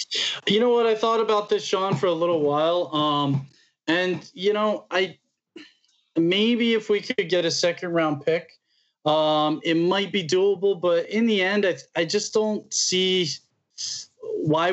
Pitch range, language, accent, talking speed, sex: 150-195 Hz, English, American, 165 wpm, male